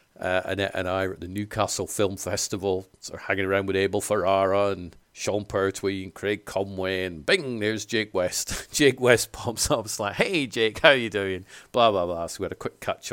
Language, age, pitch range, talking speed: English, 40-59, 95-110 Hz, 225 wpm